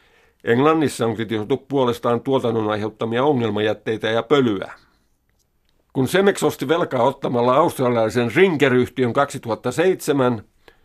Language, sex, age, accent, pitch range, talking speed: Finnish, male, 50-69, native, 115-140 Hz, 95 wpm